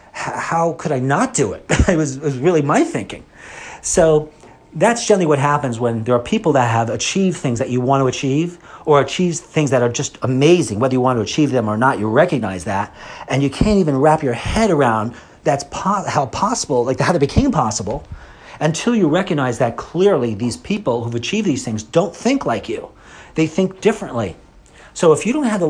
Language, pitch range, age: English, 120-165 Hz, 40-59